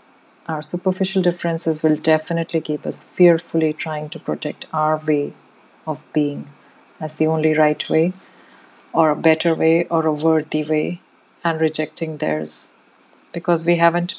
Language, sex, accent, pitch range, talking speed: English, female, Indian, 155-170 Hz, 145 wpm